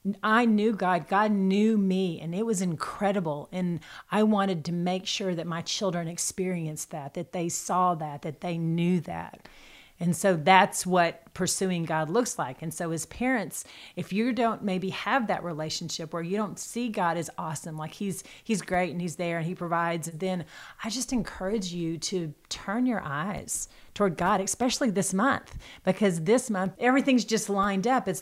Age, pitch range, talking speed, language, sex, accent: 40-59, 175-215 Hz, 185 wpm, English, female, American